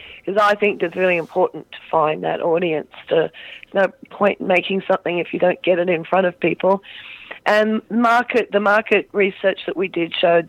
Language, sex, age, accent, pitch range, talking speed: English, female, 40-59, Australian, 170-205 Hz, 200 wpm